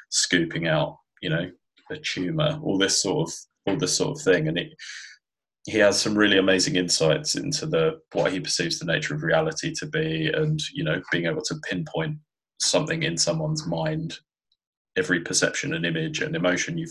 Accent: British